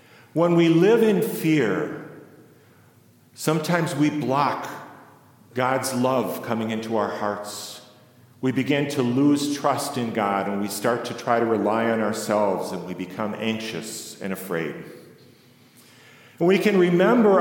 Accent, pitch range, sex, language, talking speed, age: American, 110-150 Hz, male, English, 135 wpm, 50-69